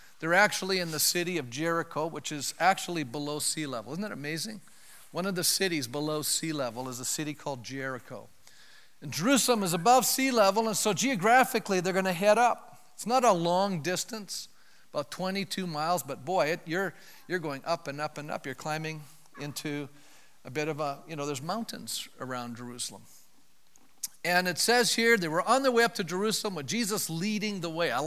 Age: 50-69